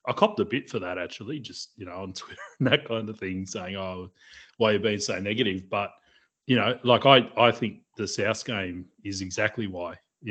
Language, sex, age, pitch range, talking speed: English, male, 30-49, 105-125 Hz, 225 wpm